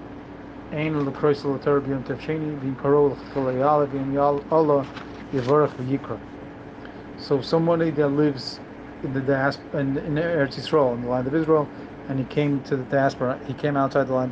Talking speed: 110 wpm